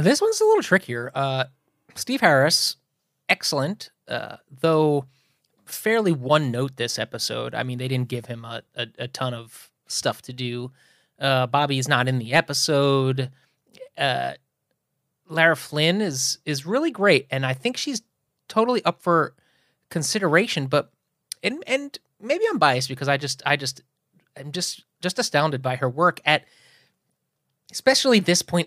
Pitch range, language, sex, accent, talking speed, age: 135-195 Hz, English, male, American, 155 wpm, 30-49